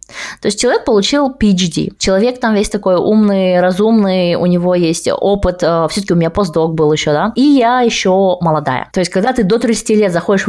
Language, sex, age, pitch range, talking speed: Russian, female, 20-39, 185-240 Hz, 195 wpm